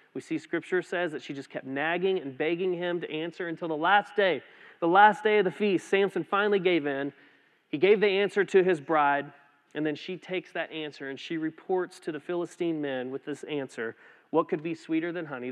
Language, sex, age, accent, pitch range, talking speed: English, male, 30-49, American, 140-180 Hz, 220 wpm